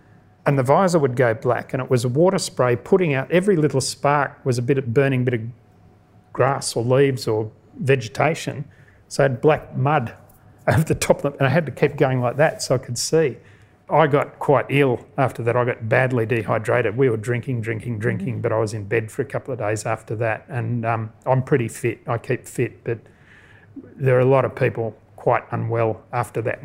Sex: male